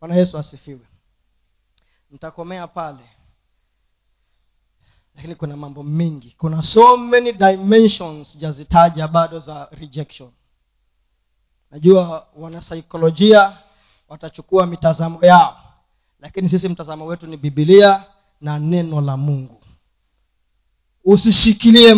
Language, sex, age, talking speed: Swahili, male, 40-59, 90 wpm